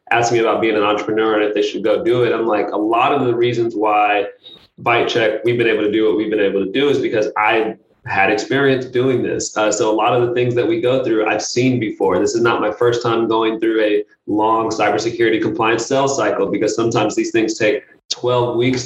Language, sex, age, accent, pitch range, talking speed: English, male, 20-39, American, 110-130 Hz, 240 wpm